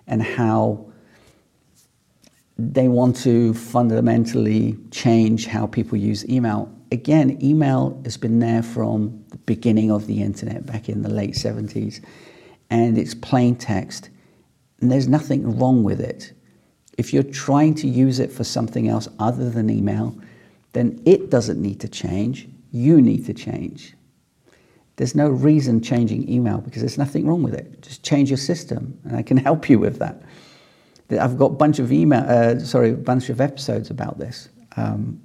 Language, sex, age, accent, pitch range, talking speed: English, male, 50-69, British, 110-135 Hz, 165 wpm